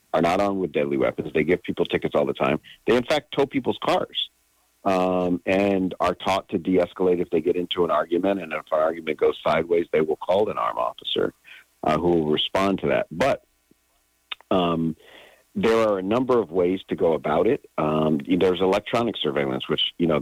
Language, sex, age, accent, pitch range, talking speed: English, male, 50-69, American, 75-110 Hz, 200 wpm